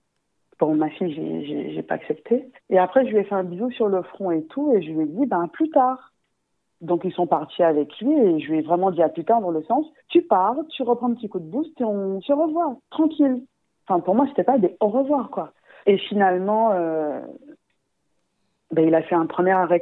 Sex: female